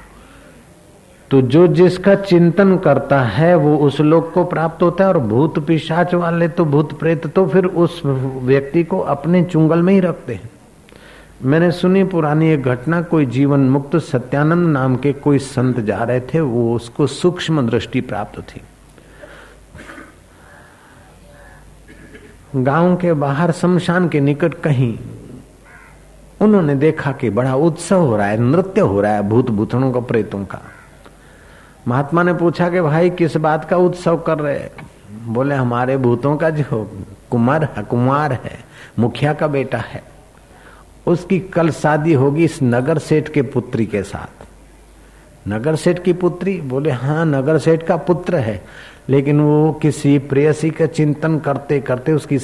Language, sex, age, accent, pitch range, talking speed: Hindi, male, 50-69, native, 125-165 Hz, 150 wpm